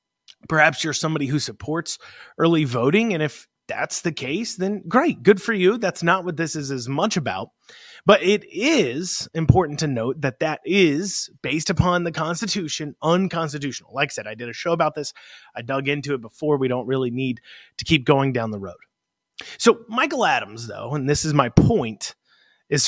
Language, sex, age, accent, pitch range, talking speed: English, male, 30-49, American, 135-180 Hz, 190 wpm